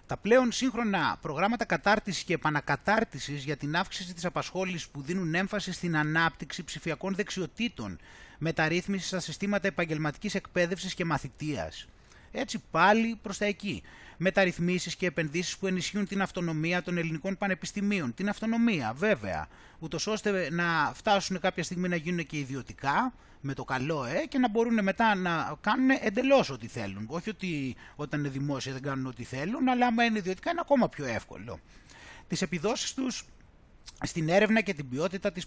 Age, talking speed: 30-49, 155 wpm